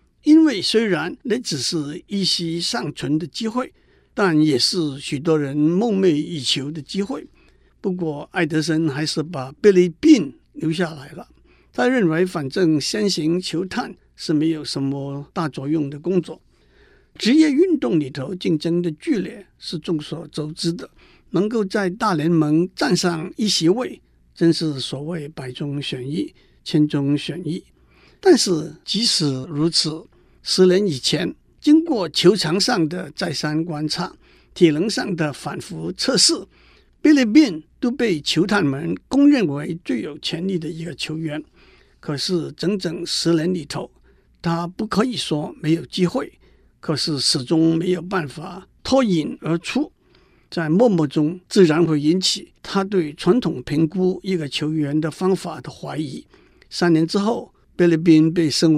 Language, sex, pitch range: Chinese, male, 155-190 Hz